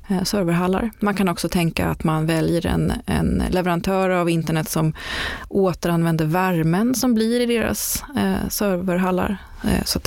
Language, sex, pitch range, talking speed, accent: Swedish, female, 170-200 Hz, 135 wpm, native